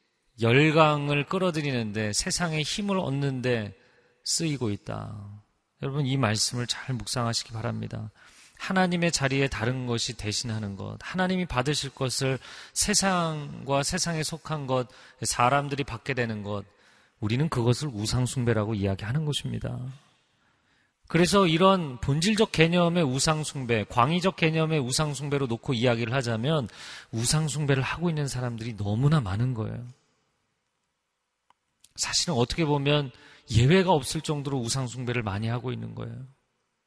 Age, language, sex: 40-59, Korean, male